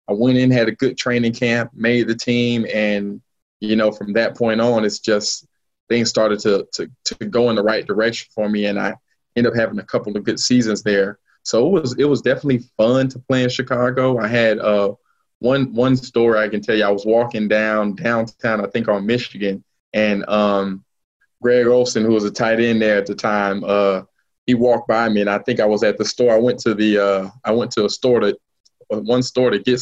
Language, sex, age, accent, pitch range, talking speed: English, male, 20-39, American, 105-125 Hz, 230 wpm